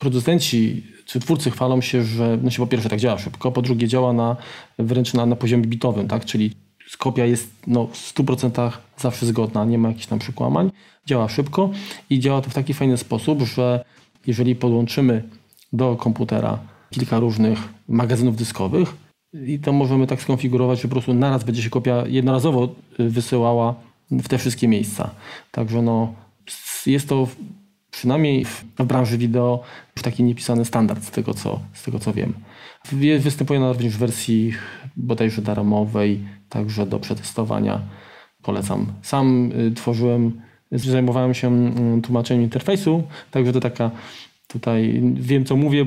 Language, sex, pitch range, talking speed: Polish, male, 115-130 Hz, 150 wpm